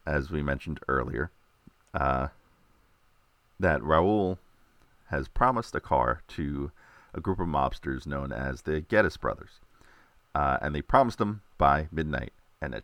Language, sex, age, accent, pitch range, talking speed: English, male, 40-59, American, 75-95 Hz, 140 wpm